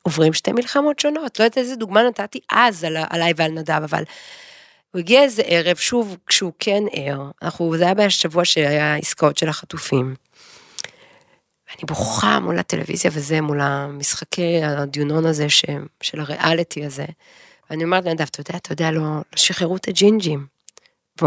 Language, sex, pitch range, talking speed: Hebrew, female, 165-245 Hz, 150 wpm